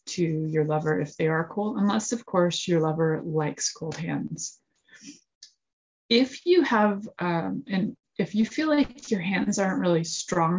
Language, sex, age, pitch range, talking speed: English, female, 20-39, 165-200 Hz, 165 wpm